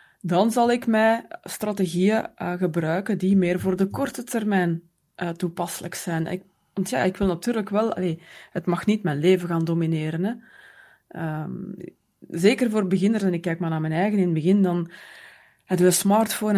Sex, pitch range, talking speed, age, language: female, 175-210 Hz, 170 wpm, 20-39, English